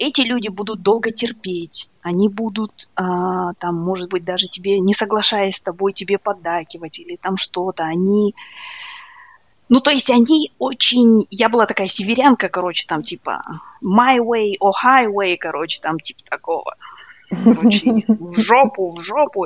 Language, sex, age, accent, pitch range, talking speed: Russian, female, 20-39, native, 180-235 Hz, 150 wpm